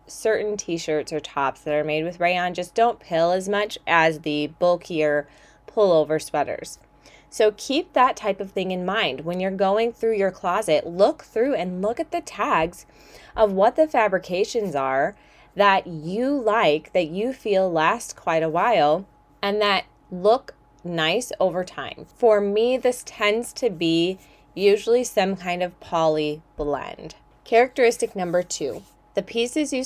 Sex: female